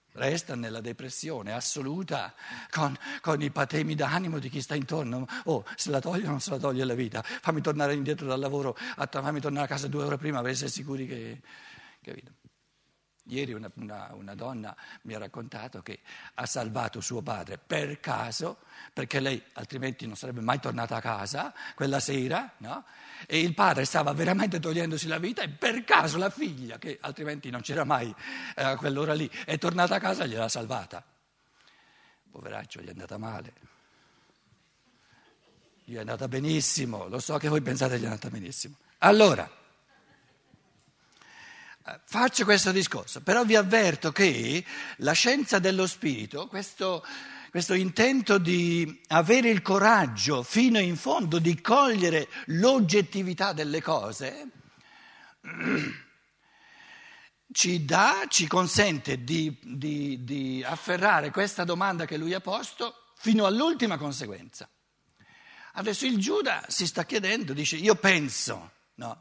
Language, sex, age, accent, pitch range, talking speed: Italian, male, 60-79, native, 130-190 Hz, 145 wpm